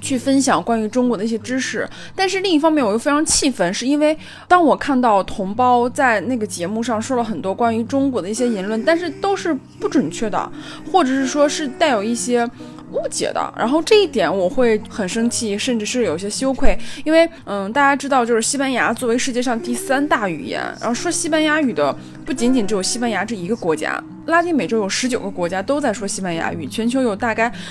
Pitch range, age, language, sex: 210-280 Hz, 20-39, Chinese, female